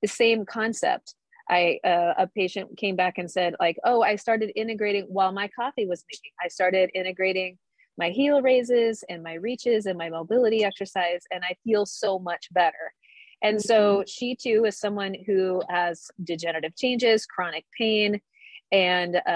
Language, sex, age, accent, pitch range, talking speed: English, female, 30-49, American, 175-220 Hz, 165 wpm